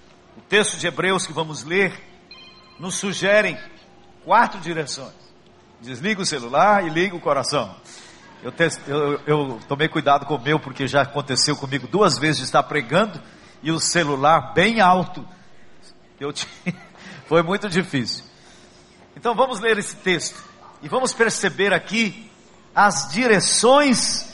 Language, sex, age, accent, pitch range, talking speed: Portuguese, male, 60-79, Brazilian, 170-230 Hz, 130 wpm